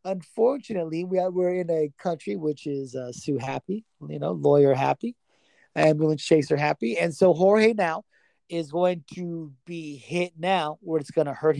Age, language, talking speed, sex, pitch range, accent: 30-49, English, 165 wpm, male, 145-190 Hz, American